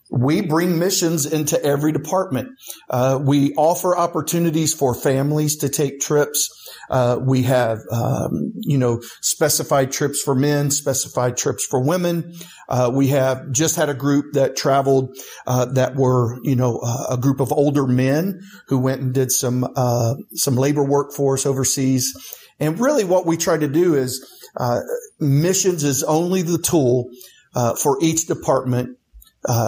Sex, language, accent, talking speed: male, English, American, 155 wpm